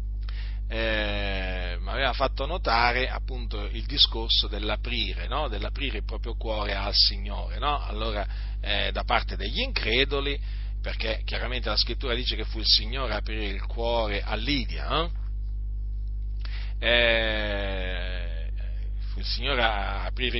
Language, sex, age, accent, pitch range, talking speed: Italian, male, 40-59, native, 100-125 Hz, 125 wpm